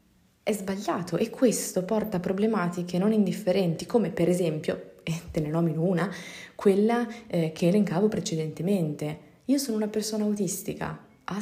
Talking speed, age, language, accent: 145 wpm, 20-39, Italian, native